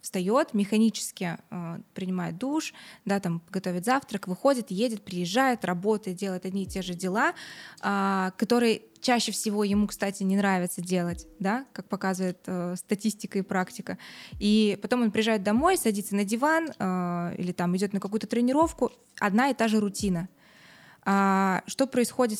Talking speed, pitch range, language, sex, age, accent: 150 wpm, 190-220 Hz, Russian, female, 20-39, native